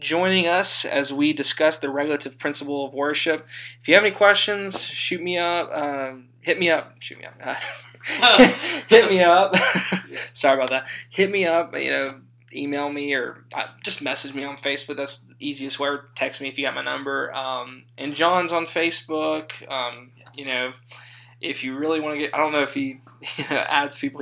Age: 20-39